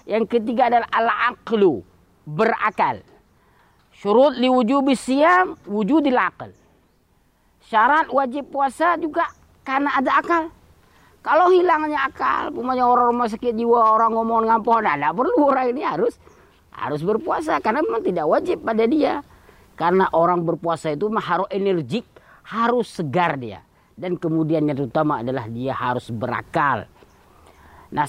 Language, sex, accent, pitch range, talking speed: Indonesian, female, native, 175-245 Hz, 130 wpm